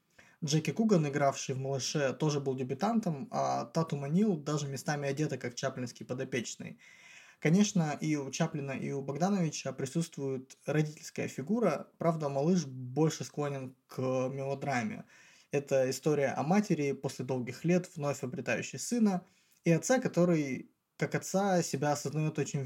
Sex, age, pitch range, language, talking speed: male, 20-39, 135-170 Hz, Russian, 135 wpm